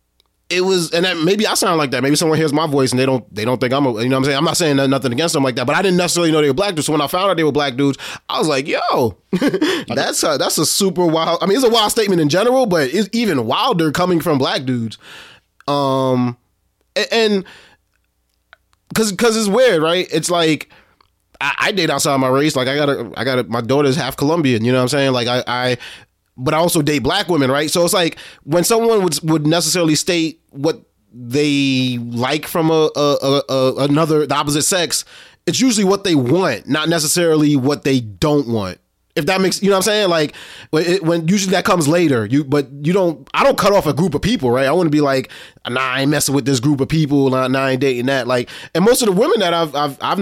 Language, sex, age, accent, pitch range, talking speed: English, male, 20-39, American, 135-175 Hz, 250 wpm